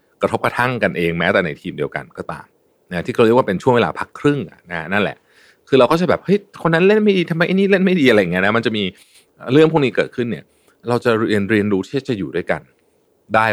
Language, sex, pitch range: Thai, male, 105-155 Hz